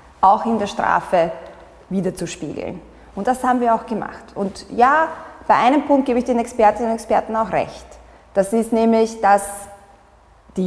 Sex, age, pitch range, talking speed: female, 20-39, 190-230 Hz, 165 wpm